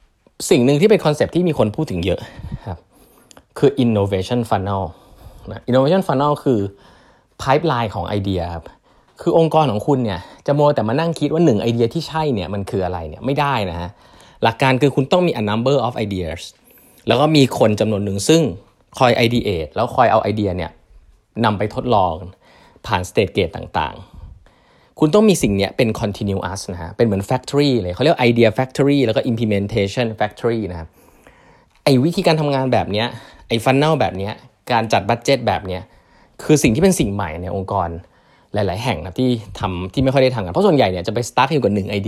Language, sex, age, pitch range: Thai, male, 20-39, 100-140 Hz